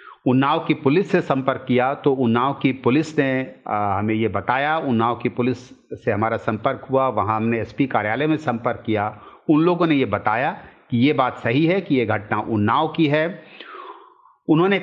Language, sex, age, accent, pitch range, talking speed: Hindi, male, 50-69, native, 115-150 Hz, 185 wpm